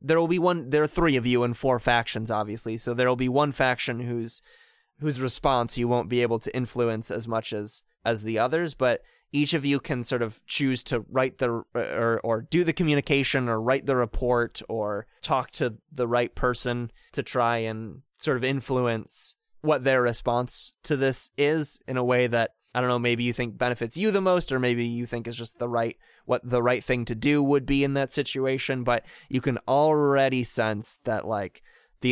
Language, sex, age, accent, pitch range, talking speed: English, male, 20-39, American, 115-135 Hz, 210 wpm